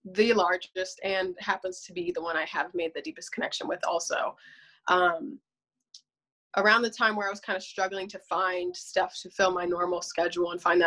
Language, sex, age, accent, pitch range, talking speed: English, female, 20-39, American, 180-205 Hz, 200 wpm